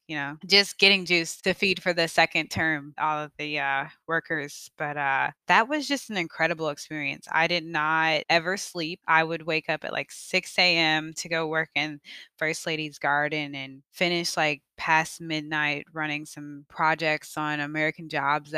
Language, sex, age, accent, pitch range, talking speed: English, female, 20-39, American, 150-165 Hz, 180 wpm